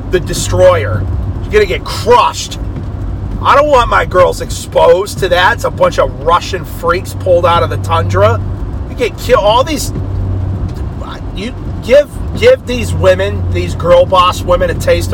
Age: 40-59